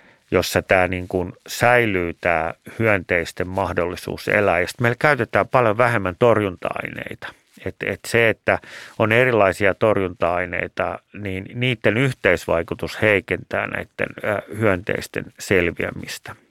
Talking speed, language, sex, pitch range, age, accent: 100 wpm, Finnish, male, 90-120 Hz, 30-49, native